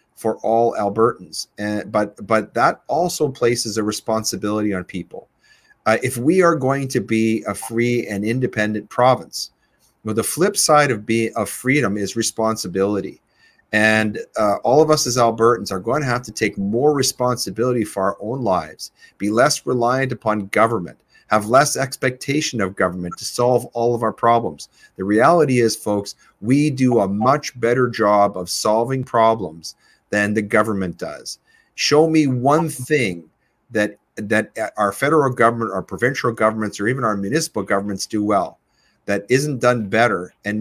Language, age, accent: English, 40-59, American